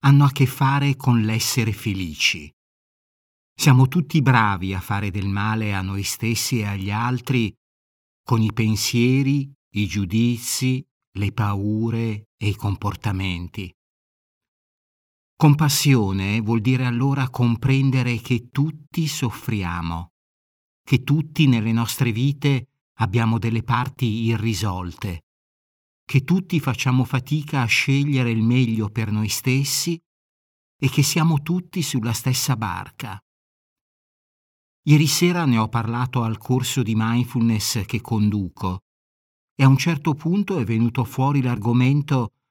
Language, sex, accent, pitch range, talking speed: Italian, male, native, 105-135 Hz, 120 wpm